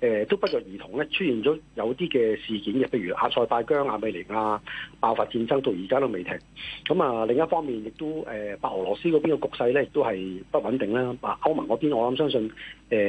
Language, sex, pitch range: Chinese, male, 110-160 Hz